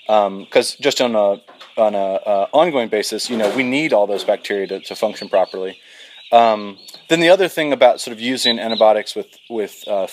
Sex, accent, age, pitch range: male, American, 30-49, 100-125 Hz